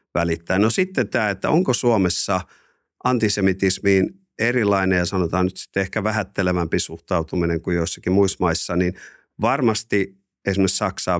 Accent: native